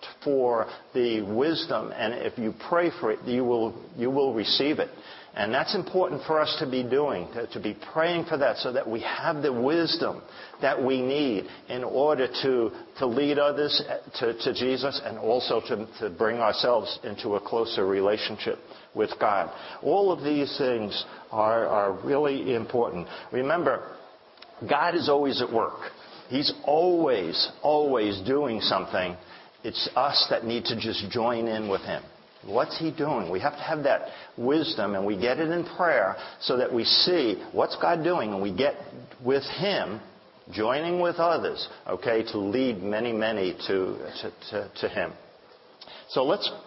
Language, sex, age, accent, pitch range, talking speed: English, male, 50-69, American, 110-150 Hz, 165 wpm